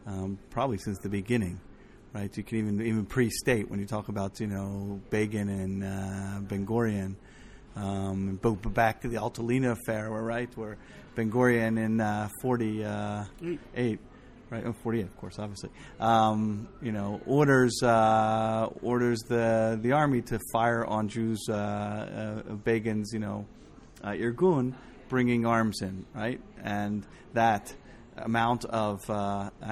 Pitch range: 105-120 Hz